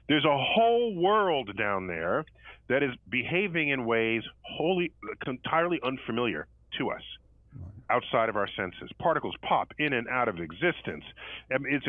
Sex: male